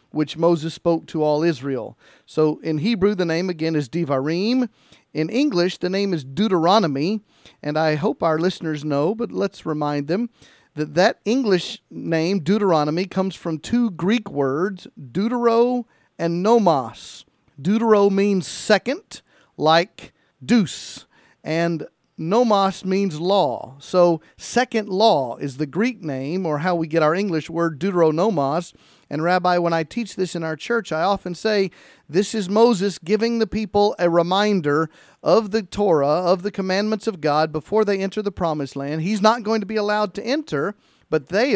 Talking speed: 160 wpm